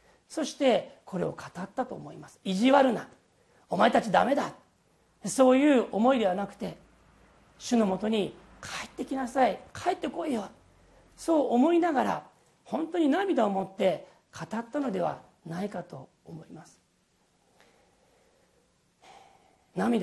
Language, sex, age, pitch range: Japanese, male, 40-59, 190-275 Hz